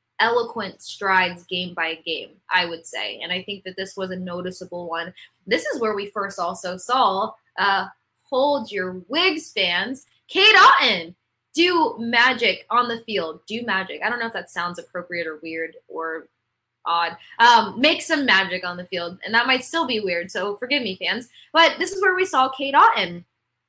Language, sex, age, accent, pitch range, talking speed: English, female, 10-29, American, 180-225 Hz, 185 wpm